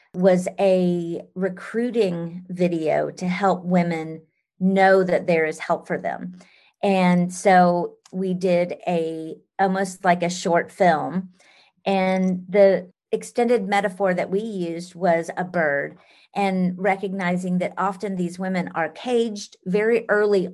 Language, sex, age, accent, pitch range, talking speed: English, female, 40-59, American, 175-200 Hz, 130 wpm